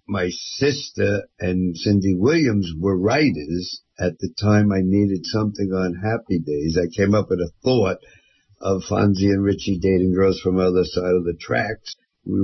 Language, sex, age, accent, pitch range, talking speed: English, male, 60-79, American, 100-140 Hz, 175 wpm